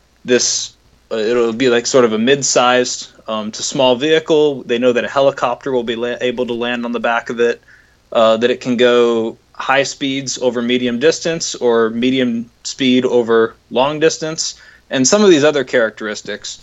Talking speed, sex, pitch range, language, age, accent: 175 wpm, male, 120-140 Hz, English, 20-39, American